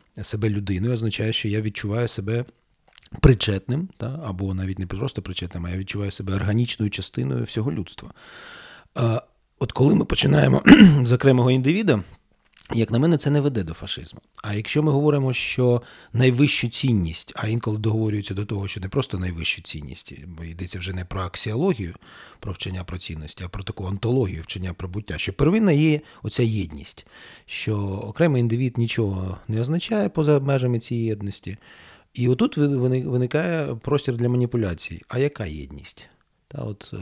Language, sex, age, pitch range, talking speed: Ukrainian, male, 40-59, 95-130 Hz, 155 wpm